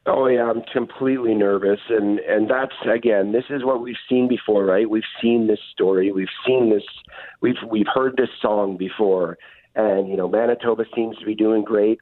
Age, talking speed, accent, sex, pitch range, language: 50-69, 190 wpm, American, male, 100-115 Hz, English